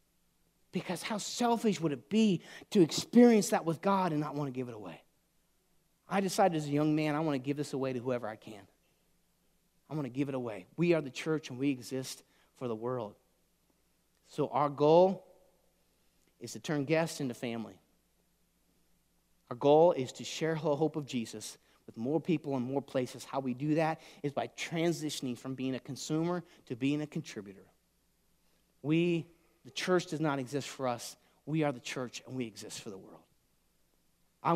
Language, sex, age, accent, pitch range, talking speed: English, male, 30-49, American, 130-170 Hz, 190 wpm